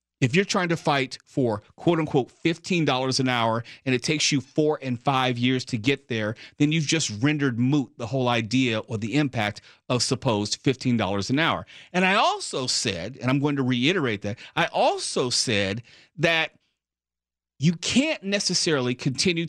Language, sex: English, male